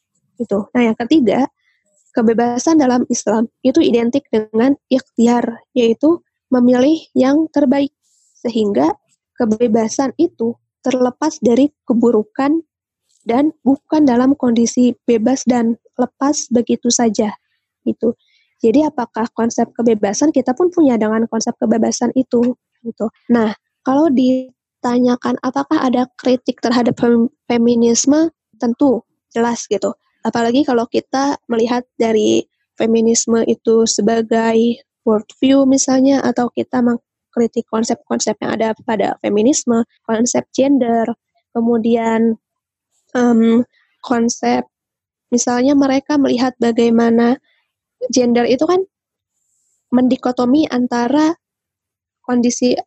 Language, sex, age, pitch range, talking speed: Indonesian, female, 20-39, 235-270 Hz, 95 wpm